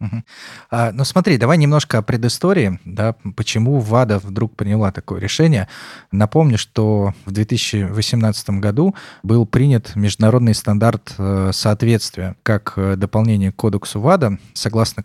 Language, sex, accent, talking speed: Russian, male, native, 130 wpm